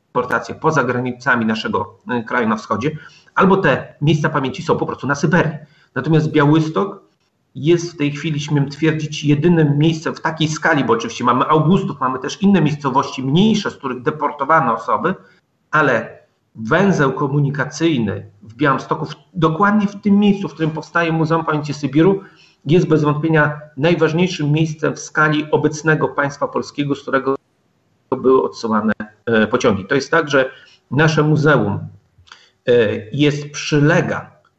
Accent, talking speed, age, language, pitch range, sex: native, 135 wpm, 40-59, Polish, 130-165 Hz, male